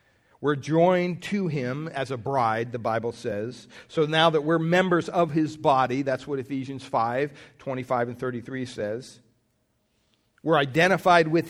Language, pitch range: English, 135-185 Hz